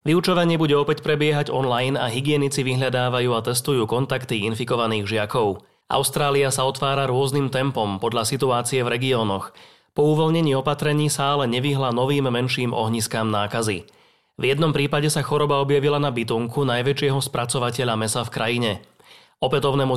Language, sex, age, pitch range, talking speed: Slovak, male, 30-49, 115-145 Hz, 140 wpm